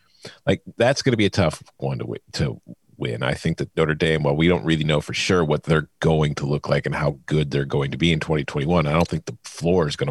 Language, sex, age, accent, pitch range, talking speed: English, male, 40-59, American, 80-105 Hz, 275 wpm